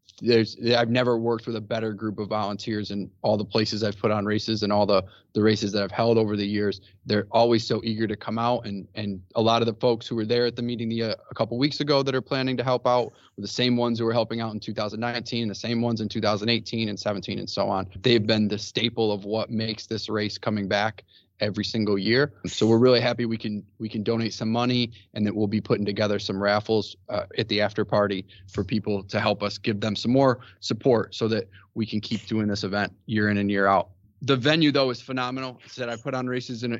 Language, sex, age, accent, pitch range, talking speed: English, male, 20-39, American, 105-120 Hz, 250 wpm